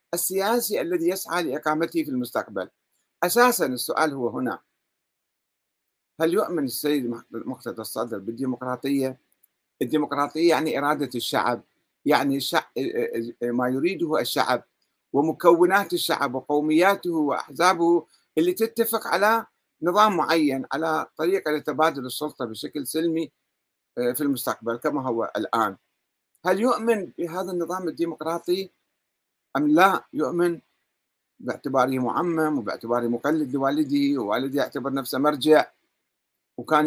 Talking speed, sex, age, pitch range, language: 100 wpm, male, 60-79, 145-190 Hz, Arabic